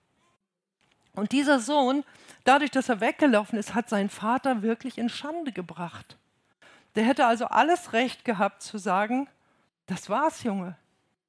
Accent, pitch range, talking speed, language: German, 200-250 Hz, 140 wpm, German